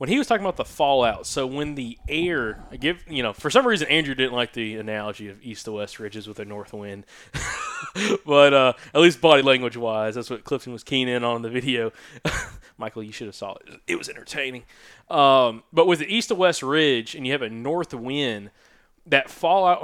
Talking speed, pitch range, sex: 220 wpm, 115-150 Hz, male